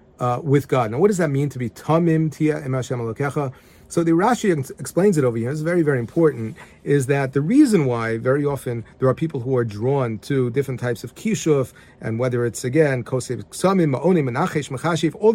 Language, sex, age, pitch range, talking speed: English, male, 40-59, 125-155 Hz, 170 wpm